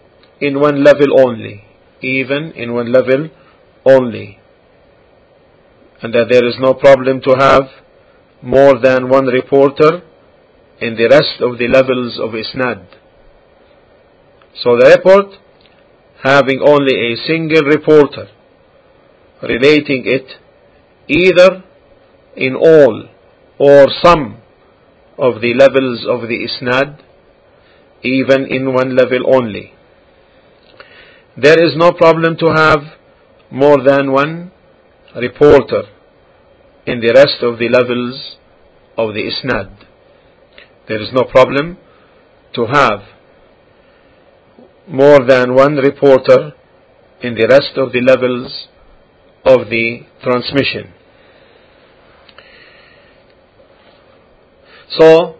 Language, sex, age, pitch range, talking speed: English, male, 50-69, 125-155 Hz, 100 wpm